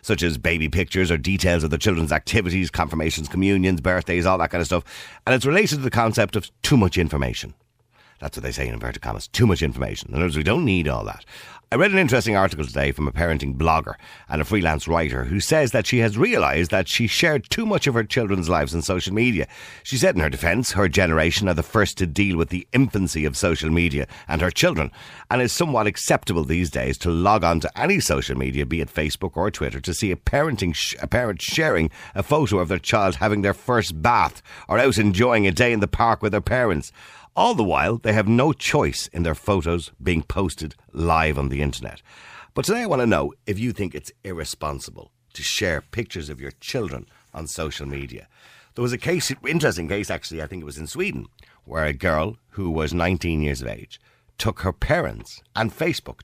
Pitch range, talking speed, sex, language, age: 80-105 Hz, 220 wpm, male, English, 60-79